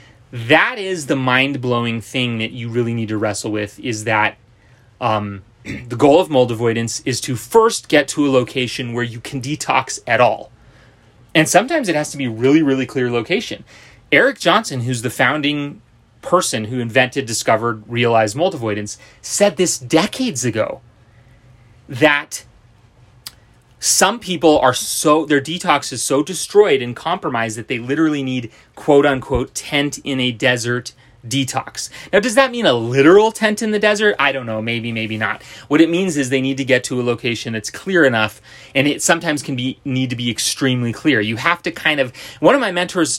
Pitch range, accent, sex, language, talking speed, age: 115-145 Hz, American, male, English, 180 wpm, 30-49